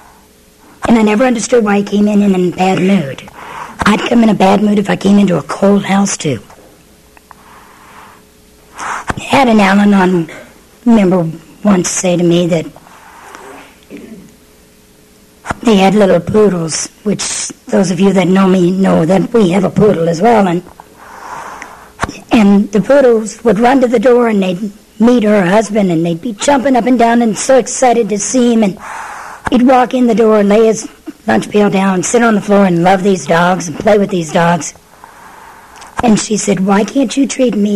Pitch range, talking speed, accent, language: 175-225 Hz, 185 wpm, American, English